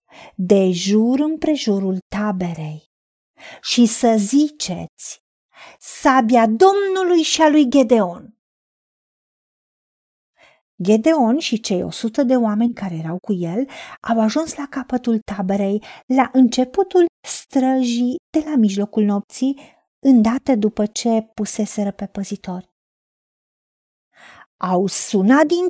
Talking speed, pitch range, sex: 105 wpm, 210-290 Hz, female